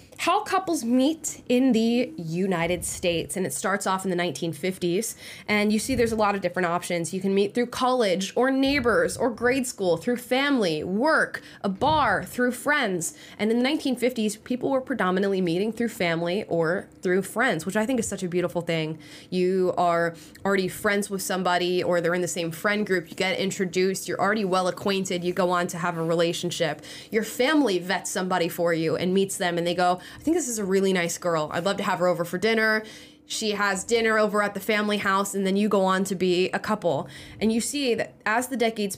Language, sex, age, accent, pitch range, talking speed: English, female, 20-39, American, 180-240 Hz, 215 wpm